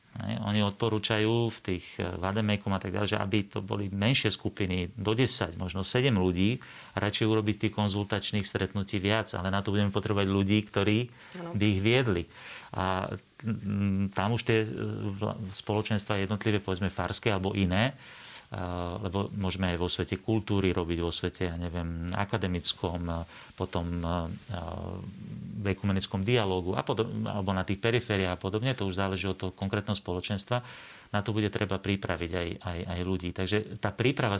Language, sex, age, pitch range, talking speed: Slovak, male, 40-59, 95-110 Hz, 150 wpm